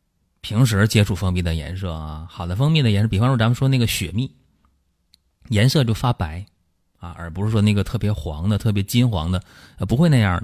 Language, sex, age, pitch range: Chinese, male, 30-49, 90-115 Hz